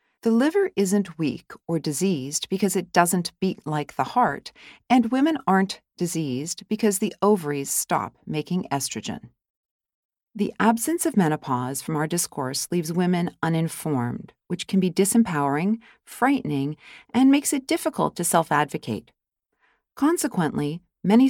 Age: 40-59